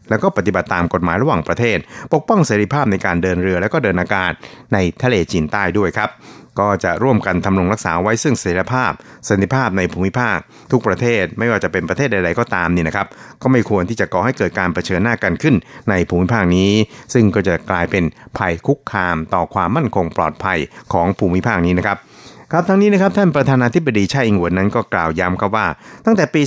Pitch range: 90-115 Hz